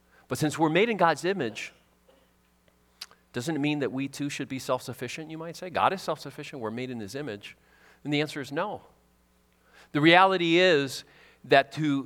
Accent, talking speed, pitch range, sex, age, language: American, 185 wpm, 95-145 Hz, male, 40-59, English